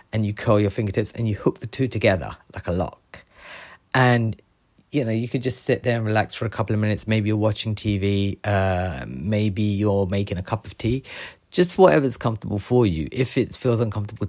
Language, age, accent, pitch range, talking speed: English, 30-49, British, 95-115 Hz, 210 wpm